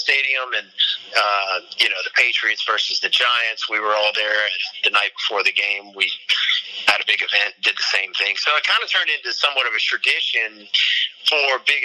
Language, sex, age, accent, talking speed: English, male, 30-49, American, 205 wpm